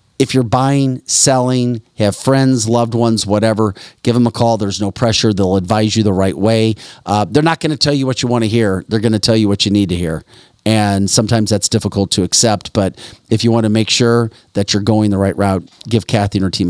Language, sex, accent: English, male, American